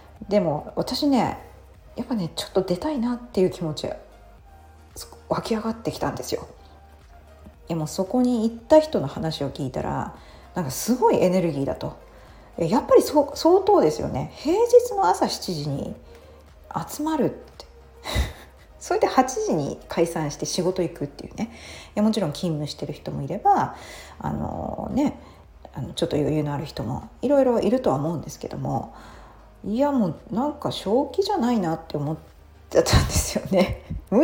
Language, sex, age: Japanese, female, 40-59